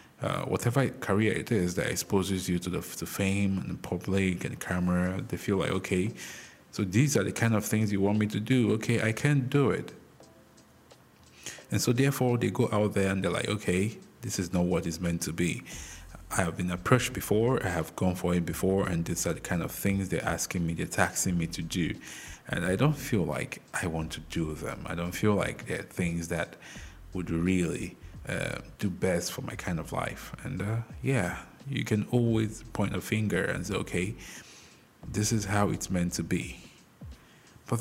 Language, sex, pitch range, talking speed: English, male, 85-110 Hz, 205 wpm